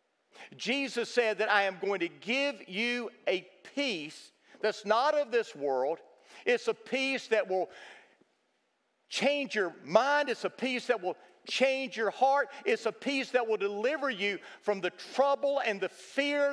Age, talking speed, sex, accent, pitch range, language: 50-69, 165 wpm, male, American, 210-270 Hz, English